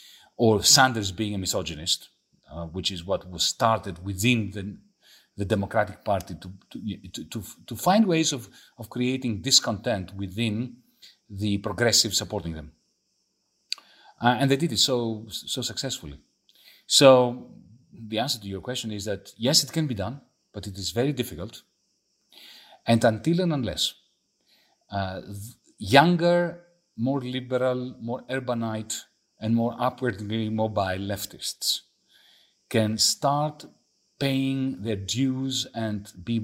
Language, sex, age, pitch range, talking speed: English, male, 40-59, 100-130 Hz, 135 wpm